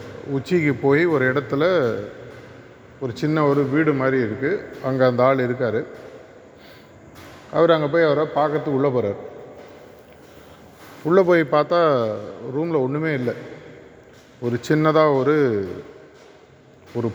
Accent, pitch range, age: native, 125-155 Hz, 30-49